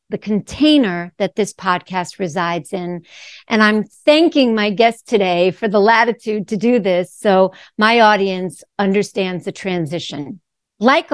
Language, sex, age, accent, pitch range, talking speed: English, female, 50-69, American, 180-240 Hz, 140 wpm